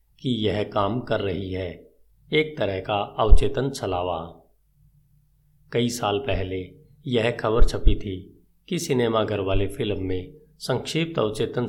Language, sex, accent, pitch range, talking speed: Hindi, male, native, 95-130 Hz, 130 wpm